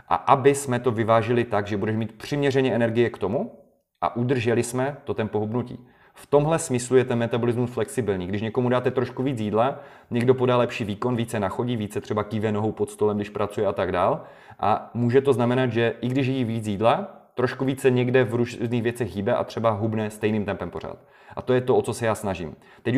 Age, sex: 30-49, male